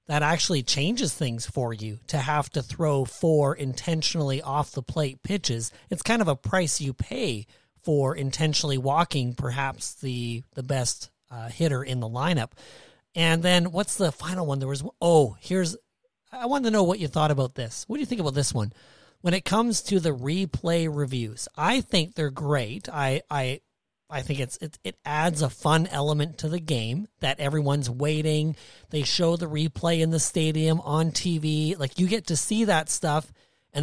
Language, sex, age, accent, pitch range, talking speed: English, male, 30-49, American, 135-170 Hz, 190 wpm